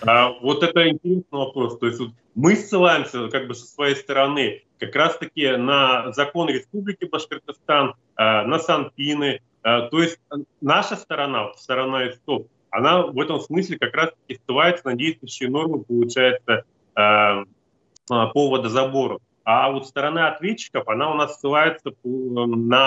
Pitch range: 125-165 Hz